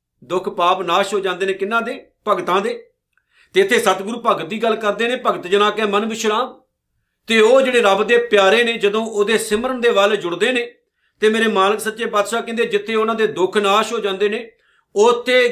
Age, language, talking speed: 50-69, Punjabi, 200 wpm